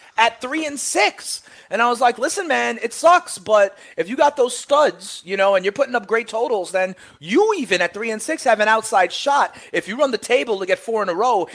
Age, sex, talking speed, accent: 30-49, male, 250 wpm, American